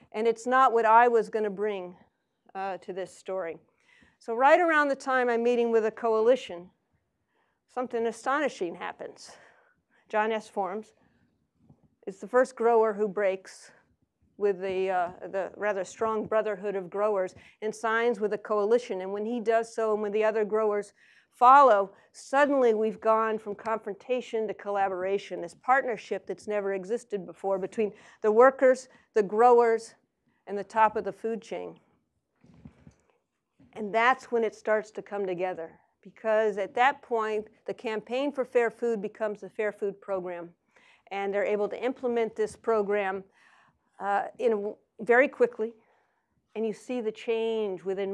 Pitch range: 200-235 Hz